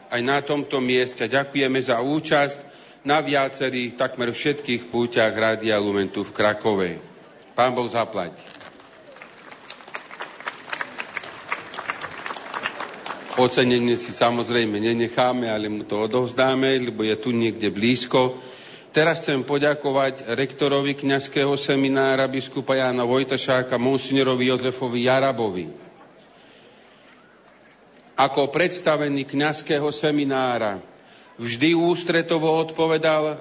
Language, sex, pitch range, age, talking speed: Slovak, male, 125-145 Hz, 50-69, 90 wpm